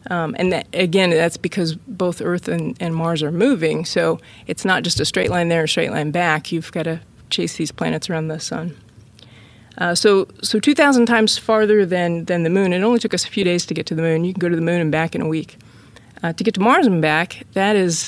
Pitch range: 160-200 Hz